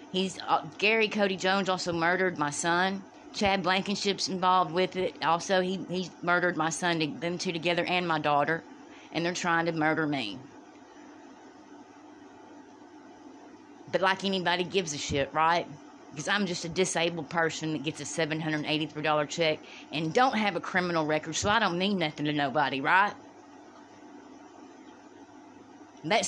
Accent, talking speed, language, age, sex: American, 145 wpm, English, 30-49, female